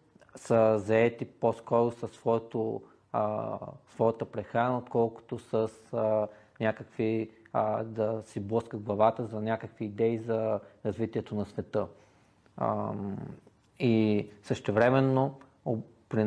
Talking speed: 100 wpm